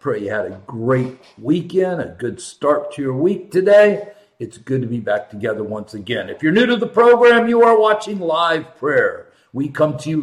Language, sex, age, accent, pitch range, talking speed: English, male, 50-69, American, 130-205 Hz, 210 wpm